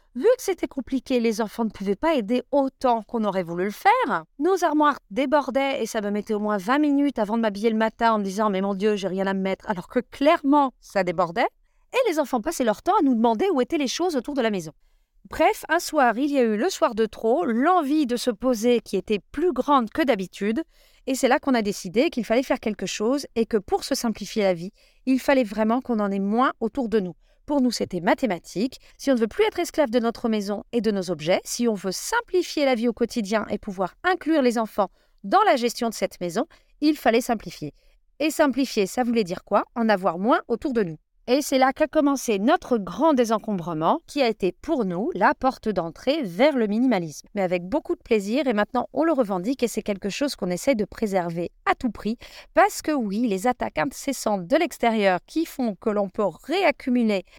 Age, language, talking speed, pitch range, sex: 40-59, French, 230 wpm, 210-290 Hz, female